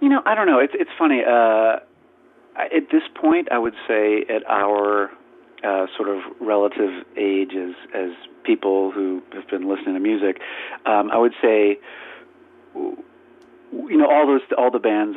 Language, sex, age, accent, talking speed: English, male, 40-59, American, 160 wpm